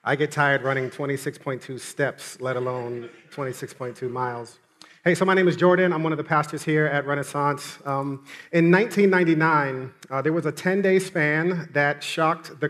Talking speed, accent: 170 wpm, American